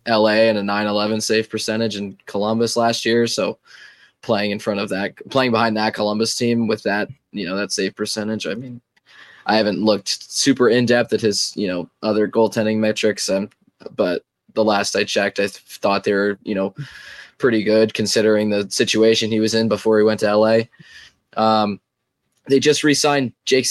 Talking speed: 185 wpm